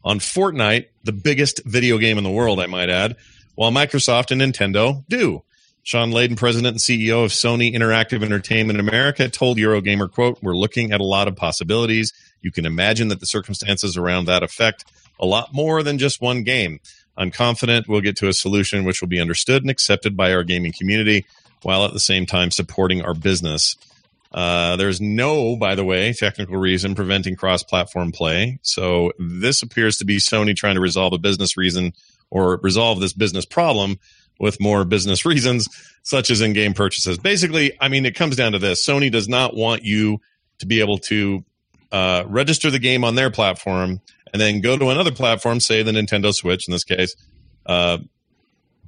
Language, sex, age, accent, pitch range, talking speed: English, male, 40-59, American, 95-120 Hz, 185 wpm